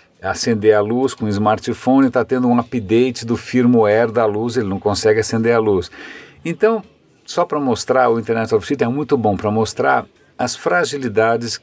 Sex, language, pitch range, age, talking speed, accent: male, Portuguese, 105-130 Hz, 50-69, 185 wpm, Brazilian